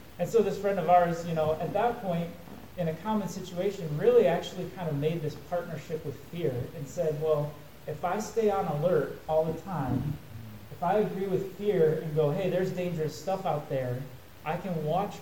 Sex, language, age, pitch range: male, English, 30-49, 145-180 Hz